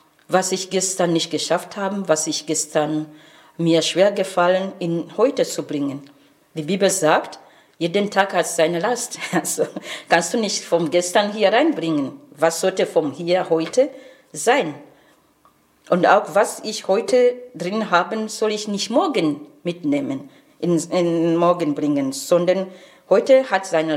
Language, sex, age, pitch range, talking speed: Portuguese, female, 40-59, 155-195 Hz, 145 wpm